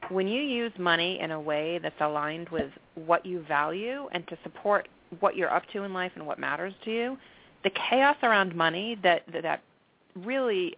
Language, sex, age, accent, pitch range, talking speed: English, female, 30-49, American, 165-210 Hz, 190 wpm